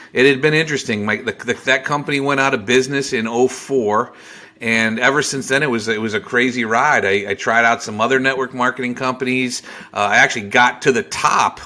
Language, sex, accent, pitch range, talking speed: English, male, American, 115-140 Hz, 215 wpm